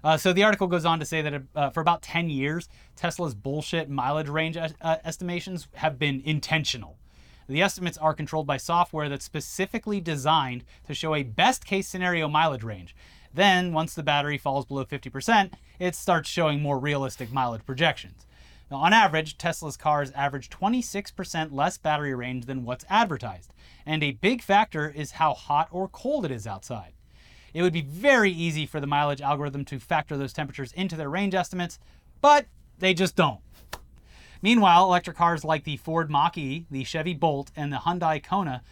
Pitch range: 140-180 Hz